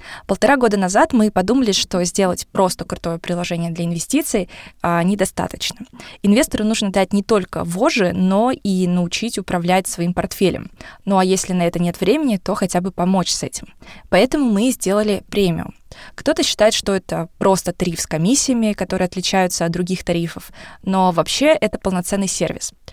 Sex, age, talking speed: female, 20-39, 155 wpm